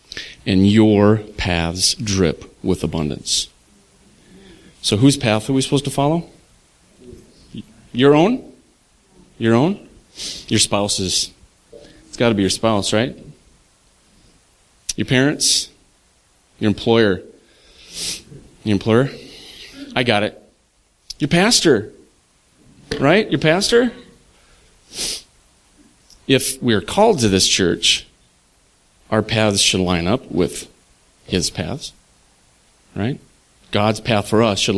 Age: 30-49